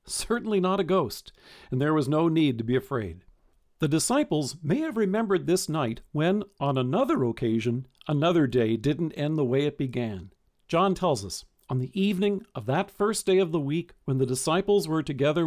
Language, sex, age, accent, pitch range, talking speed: English, male, 50-69, American, 130-180 Hz, 190 wpm